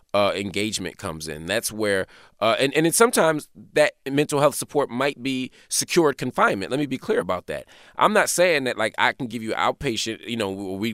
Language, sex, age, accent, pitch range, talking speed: English, male, 30-49, American, 100-145 Hz, 210 wpm